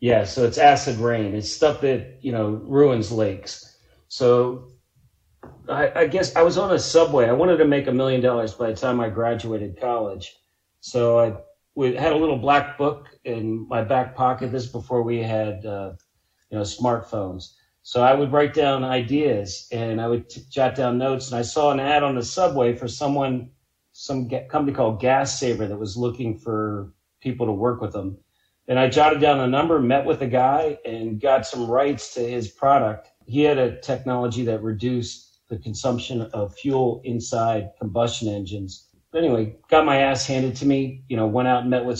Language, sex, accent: English, male, American